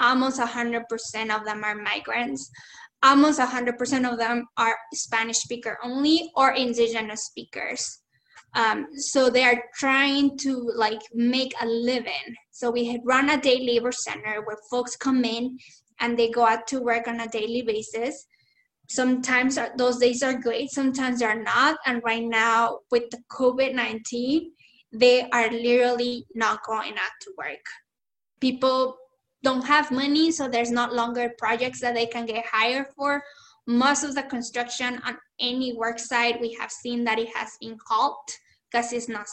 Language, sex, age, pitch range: English, female, 10-29, 230-260 Hz